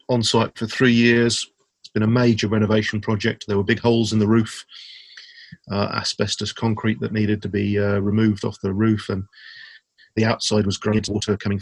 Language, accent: English, British